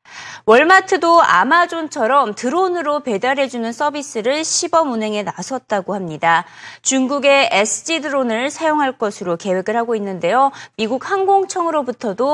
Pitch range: 200-310 Hz